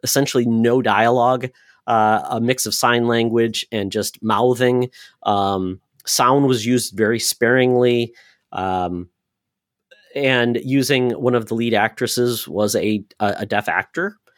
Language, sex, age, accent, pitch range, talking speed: English, male, 40-59, American, 110-135 Hz, 135 wpm